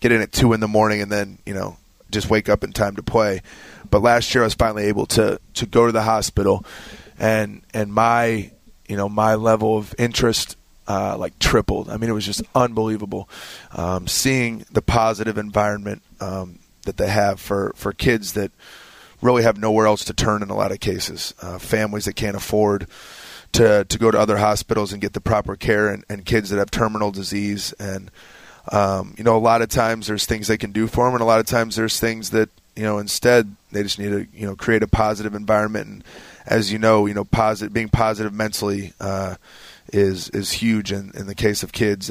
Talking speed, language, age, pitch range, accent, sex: 215 wpm, English, 30-49, 100-110 Hz, American, male